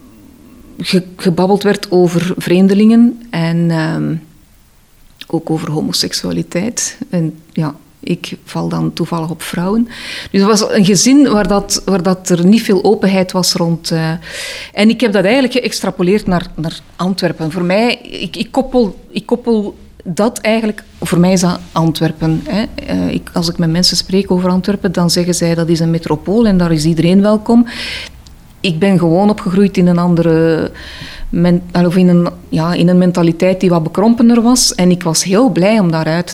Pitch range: 170-210 Hz